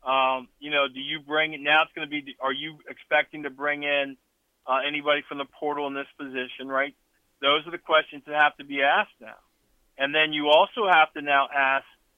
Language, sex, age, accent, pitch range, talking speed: English, male, 50-69, American, 130-155 Hz, 220 wpm